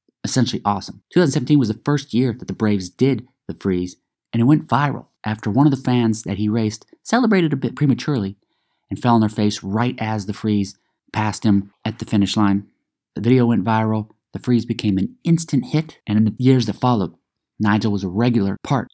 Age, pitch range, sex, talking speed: 30-49, 105-125 Hz, male, 205 wpm